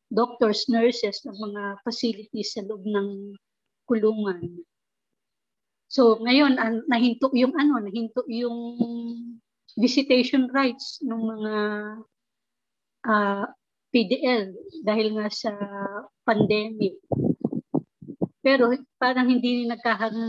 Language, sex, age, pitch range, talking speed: English, female, 20-39, 210-240 Hz, 95 wpm